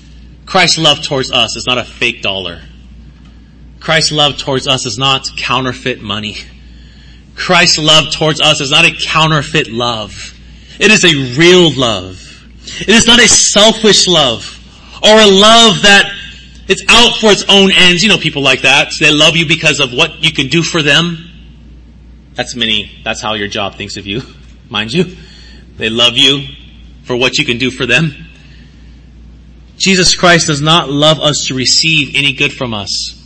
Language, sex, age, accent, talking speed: English, male, 30-49, American, 175 wpm